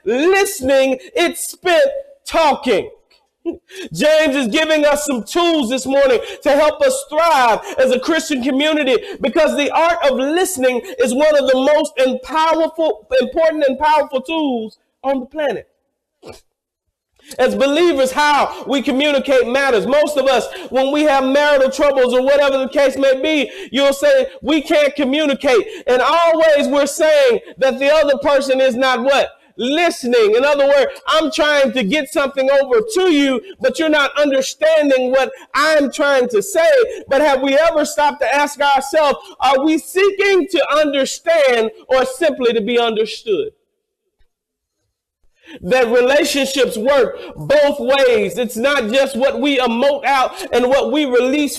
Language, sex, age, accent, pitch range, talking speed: English, male, 40-59, American, 260-315 Hz, 150 wpm